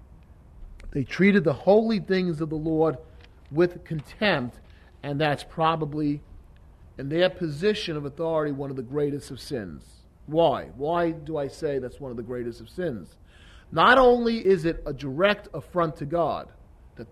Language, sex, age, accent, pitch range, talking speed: English, male, 40-59, American, 140-180 Hz, 160 wpm